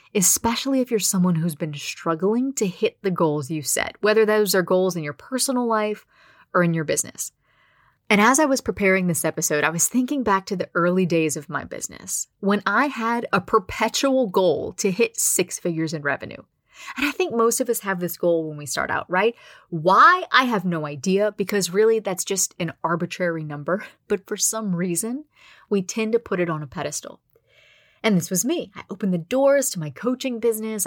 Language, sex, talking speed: English, female, 205 wpm